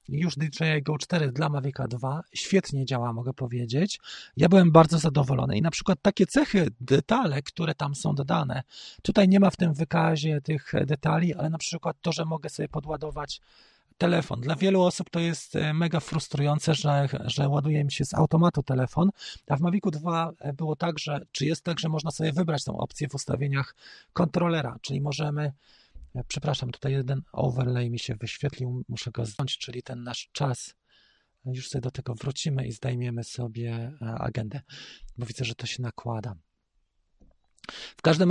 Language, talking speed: Polish, 170 wpm